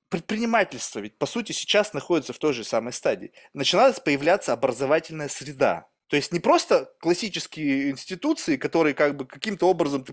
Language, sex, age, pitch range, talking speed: Russian, male, 20-39, 140-185 Hz, 150 wpm